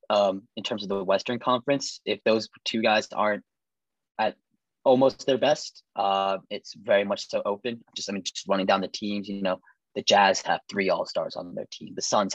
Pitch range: 100-130 Hz